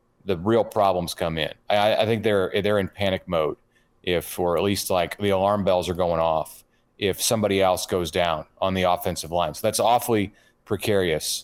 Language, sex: English, male